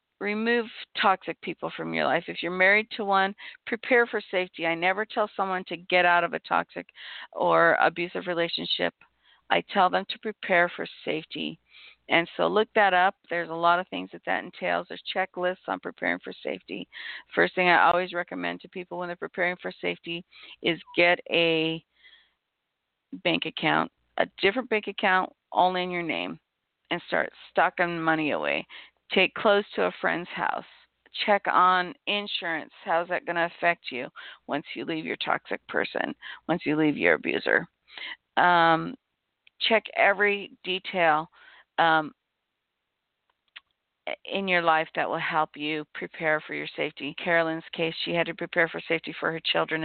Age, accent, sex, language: 50-69, American, female, English